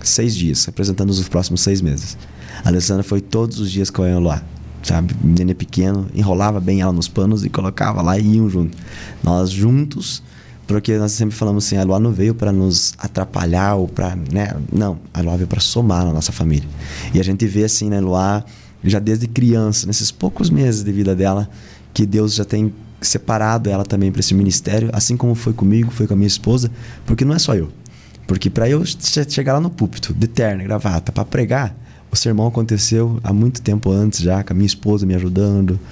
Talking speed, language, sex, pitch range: 205 wpm, Portuguese, male, 95-115 Hz